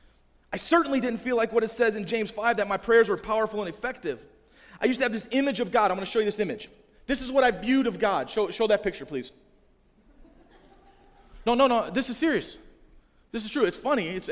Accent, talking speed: American, 240 wpm